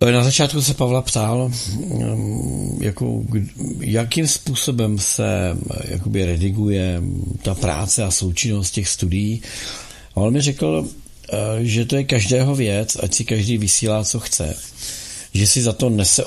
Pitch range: 100-125 Hz